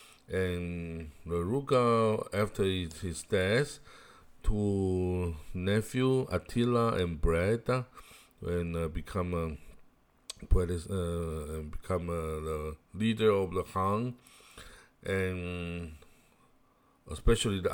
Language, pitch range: Chinese, 85-110 Hz